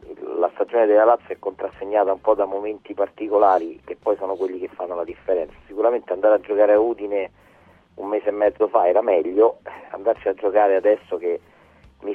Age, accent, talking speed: 30-49, native, 190 wpm